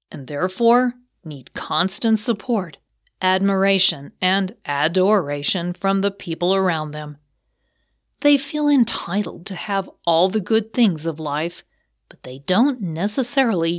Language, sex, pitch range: English, female, 160-210 Hz